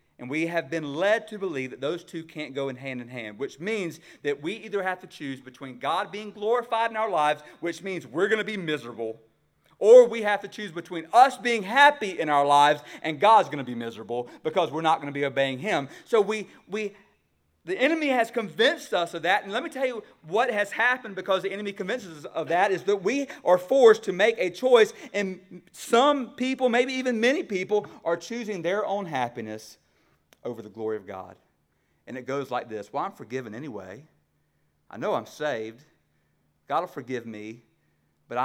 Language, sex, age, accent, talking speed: English, male, 40-59, American, 210 wpm